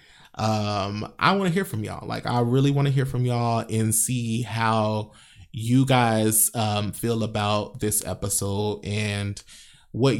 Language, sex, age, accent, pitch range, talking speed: English, male, 20-39, American, 110-135 Hz, 160 wpm